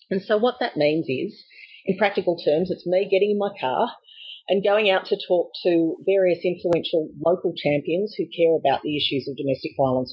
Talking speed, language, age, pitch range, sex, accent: 195 wpm, English, 40-59, 155-200 Hz, female, Australian